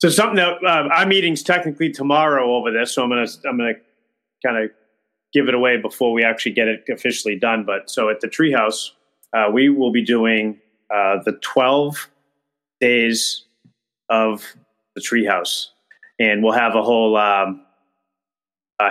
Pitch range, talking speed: 105-125 Hz, 175 wpm